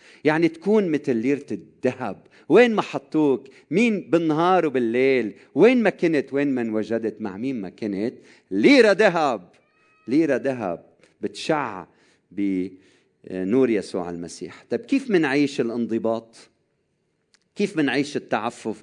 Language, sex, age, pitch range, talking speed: Arabic, male, 40-59, 125-215 Hz, 115 wpm